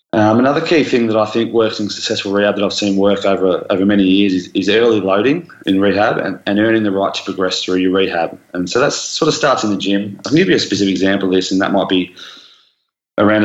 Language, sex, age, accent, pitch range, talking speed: English, male, 20-39, Australian, 95-100 Hz, 255 wpm